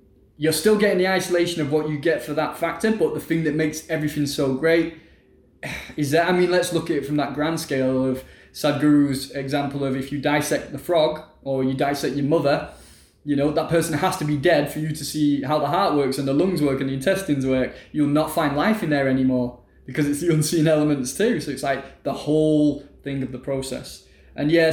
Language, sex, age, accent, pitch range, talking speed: English, male, 20-39, British, 135-155 Hz, 230 wpm